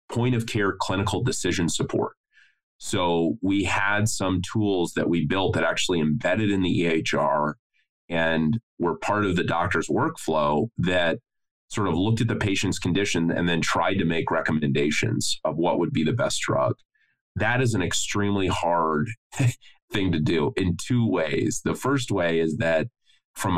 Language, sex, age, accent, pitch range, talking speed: English, male, 30-49, American, 80-105 Hz, 160 wpm